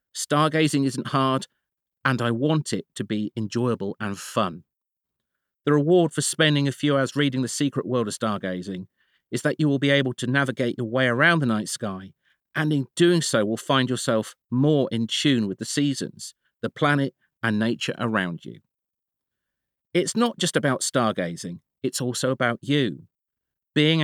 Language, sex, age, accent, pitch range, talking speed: English, male, 40-59, British, 120-150 Hz, 170 wpm